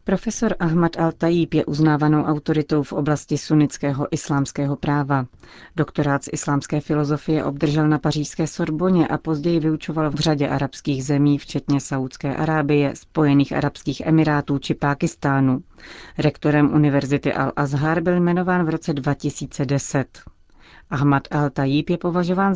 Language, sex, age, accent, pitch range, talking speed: Czech, female, 40-59, native, 140-160 Hz, 120 wpm